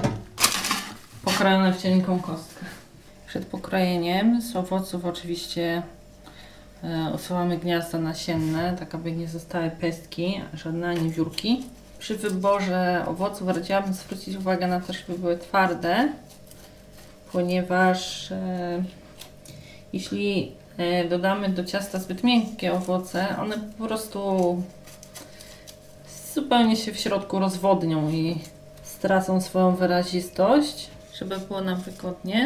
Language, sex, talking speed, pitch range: Polish, female, 105 wpm, 165-195 Hz